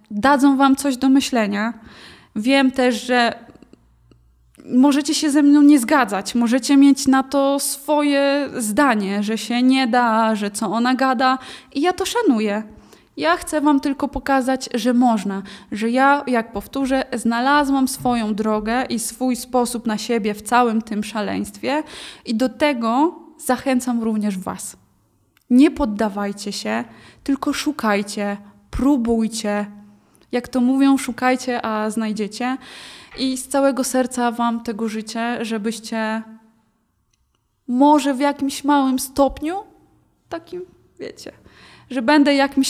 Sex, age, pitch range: female, 20-39, 215-275 Hz